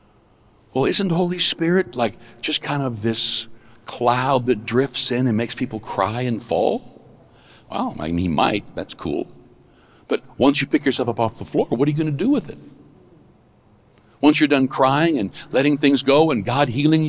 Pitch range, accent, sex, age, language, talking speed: 125-200 Hz, American, male, 60-79, English, 195 wpm